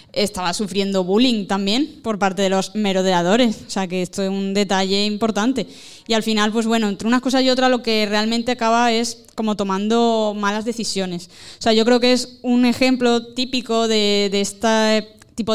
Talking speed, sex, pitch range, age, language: 190 wpm, female, 195-230 Hz, 20-39, Spanish